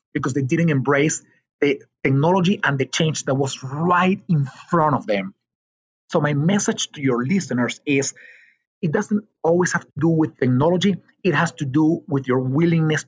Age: 30-49